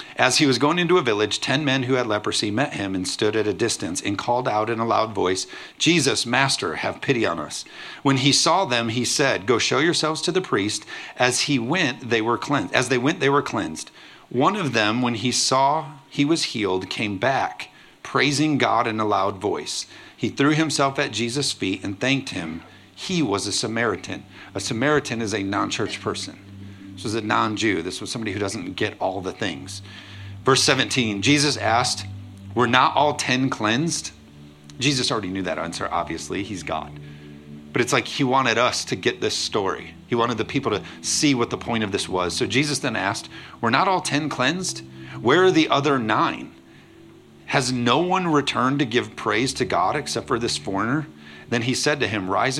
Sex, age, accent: male, 50-69, American